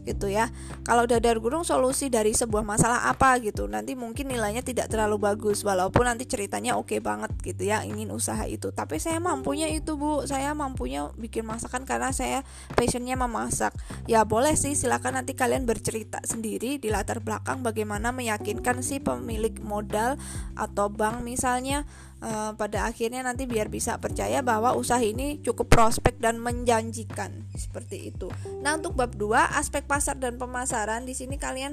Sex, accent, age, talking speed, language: female, native, 10-29, 165 wpm, Indonesian